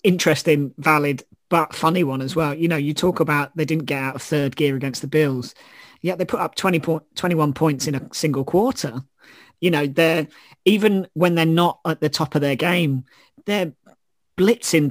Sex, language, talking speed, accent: male, English, 200 wpm, British